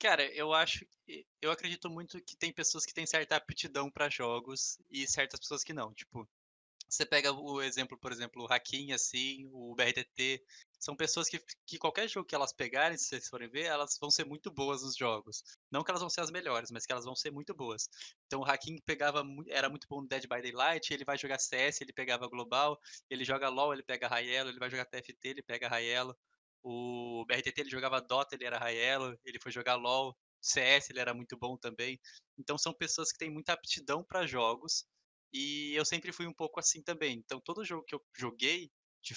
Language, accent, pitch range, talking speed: Portuguese, Brazilian, 125-150 Hz, 215 wpm